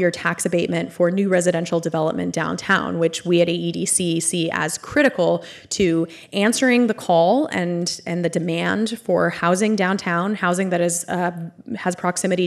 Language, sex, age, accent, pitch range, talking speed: English, female, 20-39, American, 175-205 Hz, 155 wpm